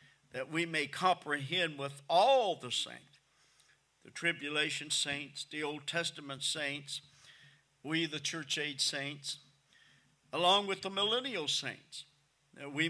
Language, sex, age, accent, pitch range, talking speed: English, male, 50-69, American, 140-170 Hz, 125 wpm